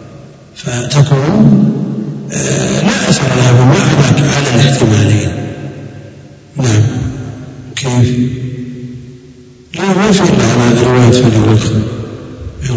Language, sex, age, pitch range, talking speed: Arabic, male, 60-79, 115-135 Hz, 100 wpm